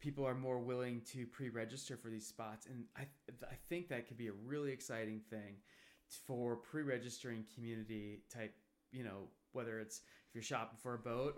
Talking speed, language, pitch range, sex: 185 wpm, English, 110-125 Hz, male